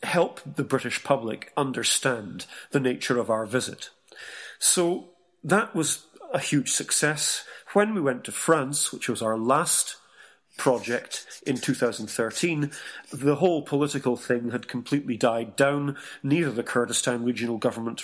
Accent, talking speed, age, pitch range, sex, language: British, 135 wpm, 40-59, 120-150 Hz, male, English